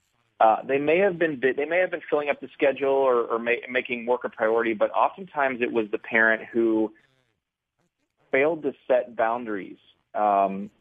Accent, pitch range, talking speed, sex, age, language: American, 105-120 Hz, 180 wpm, male, 30-49, English